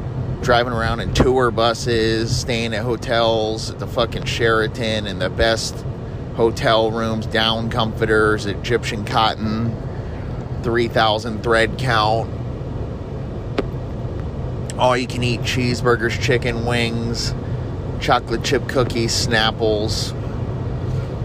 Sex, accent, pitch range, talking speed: male, American, 110-125 Hz, 100 wpm